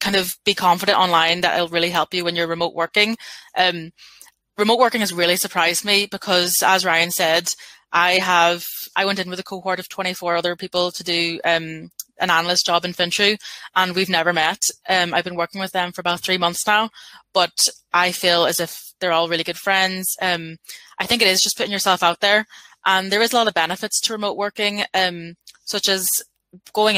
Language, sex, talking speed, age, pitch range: English, female, 210 wpm, 20-39, 175-195 Hz